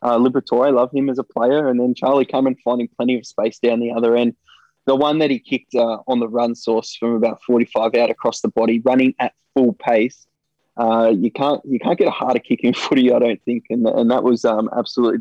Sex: male